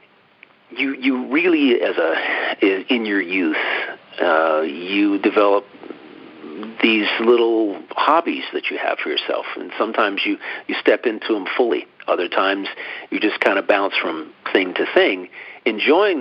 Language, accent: English, American